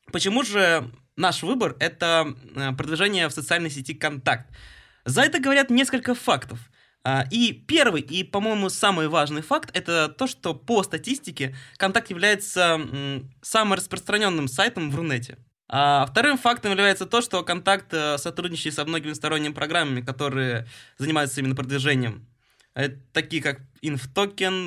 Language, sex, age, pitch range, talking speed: Russian, male, 20-39, 130-175 Hz, 135 wpm